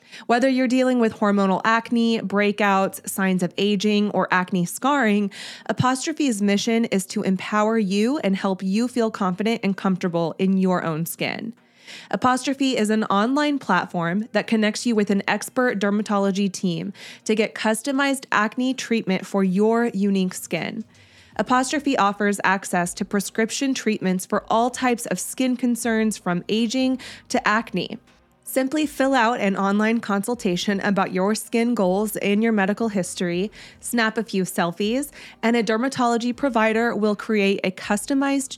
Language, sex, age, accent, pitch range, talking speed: English, female, 20-39, American, 190-230 Hz, 145 wpm